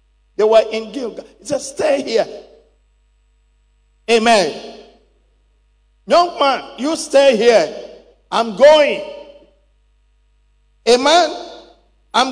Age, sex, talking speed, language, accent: 50-69, male, 90 wpm, English, Nigerian